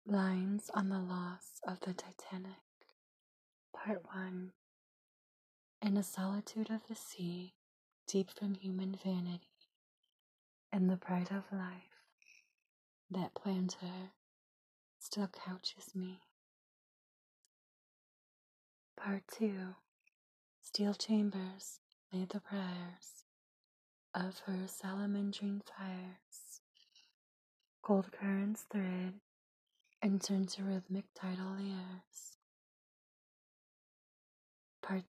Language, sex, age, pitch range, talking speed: English, female, 20-39, 185-205 Hz, 85 wpm